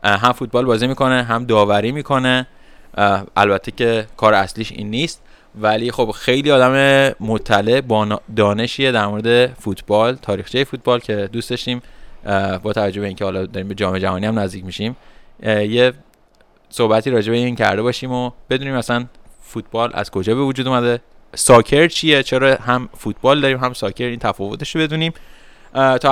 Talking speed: 155 wpm